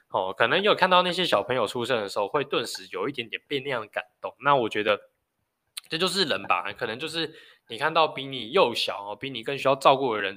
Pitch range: 105-145 Hz